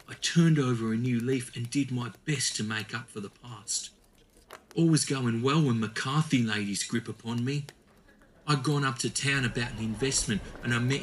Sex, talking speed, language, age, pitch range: male, 205 wpm, English, 40-59, 115-140 Hz